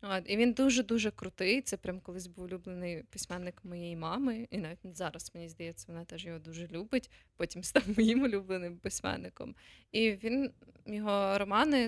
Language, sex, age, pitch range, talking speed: Ukrainian, female, 20-39, 175-205 Hz, 150 wpm